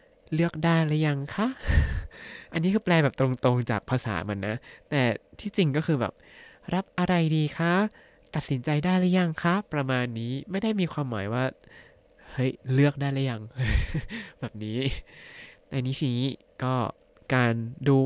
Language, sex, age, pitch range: Thai, male, 20-39, 120-155 Hz